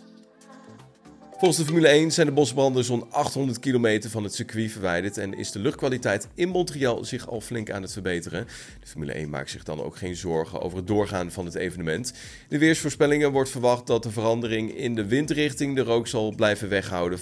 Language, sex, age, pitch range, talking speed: Dutch, male, 30-49, 95-145 Hz, 200 wpm